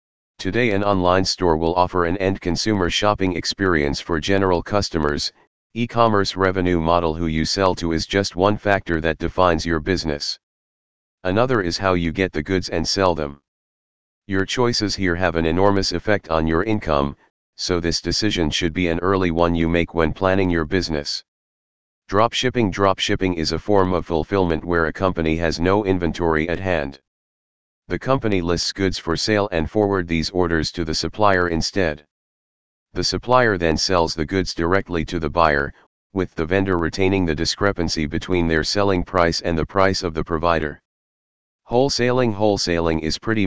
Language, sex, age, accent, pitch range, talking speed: English, male, 40-59, American, 80-95 Hz, 165 wpm